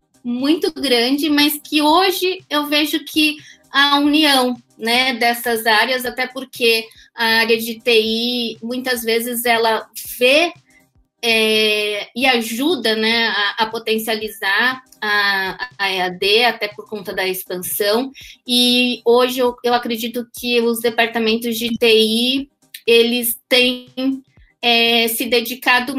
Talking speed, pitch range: 120 wpm, 225-280 Hz